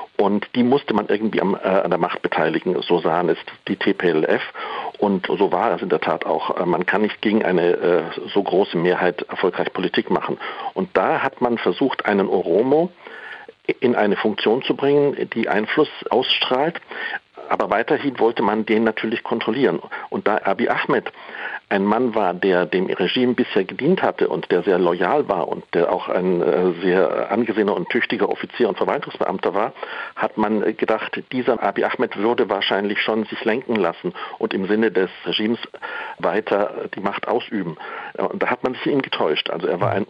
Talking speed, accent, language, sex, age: 180 wpm, German, German, male, 50-69